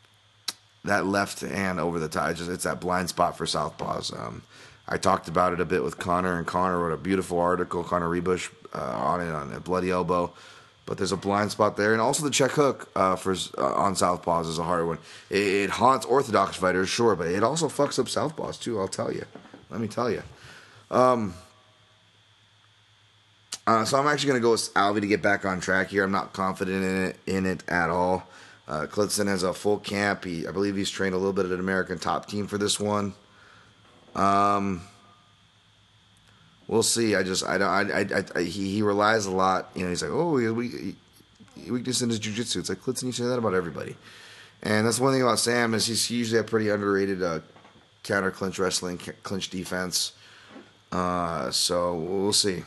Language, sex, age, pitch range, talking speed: English, male, 30-49, 90-110 Hz, 205 wpm